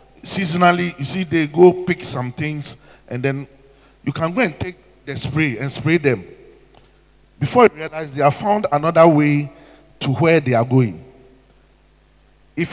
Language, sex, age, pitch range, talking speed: English, male, 50-69, 140-185 Hz, 160 wpm